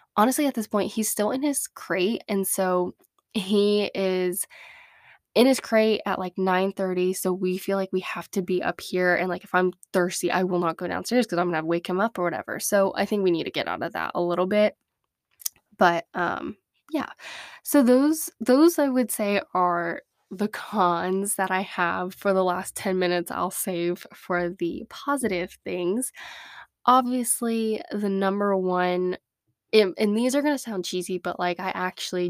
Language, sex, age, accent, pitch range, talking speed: English, female, 10-29, American, 180-225 Hz, 190 wpm